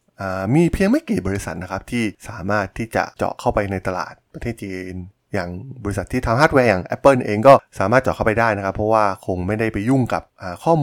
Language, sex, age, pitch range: Thai, male, 20-39, 95-120 Hz